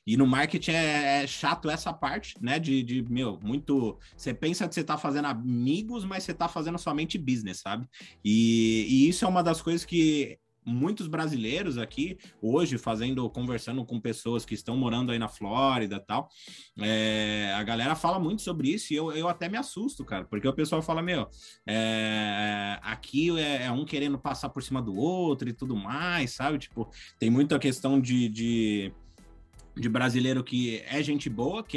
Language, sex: Portuguese, male